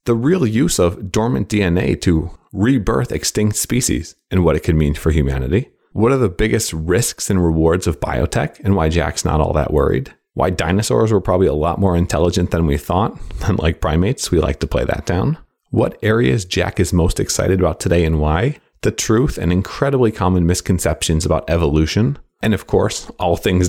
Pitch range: 85-105 Hz